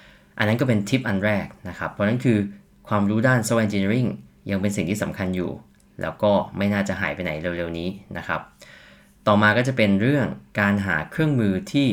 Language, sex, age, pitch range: Thai, male, 20-39, 95-120 Hz